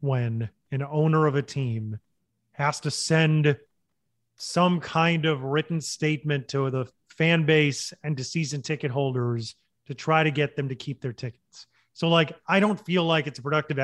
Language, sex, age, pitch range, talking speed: English, male, 30-49, 150-185 Hz, 180 wpm